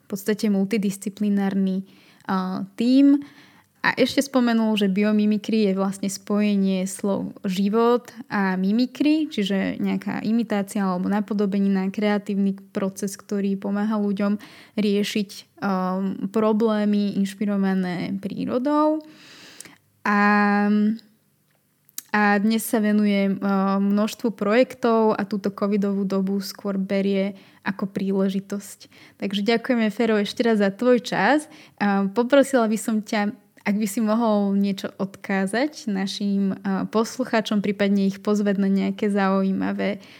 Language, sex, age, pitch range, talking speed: Slovak, female, 20-39, 195-220 Hz, 105 wpm